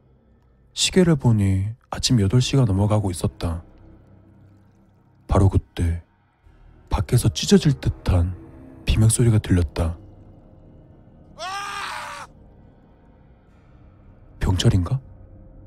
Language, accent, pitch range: Korean, native, 90-115 Hz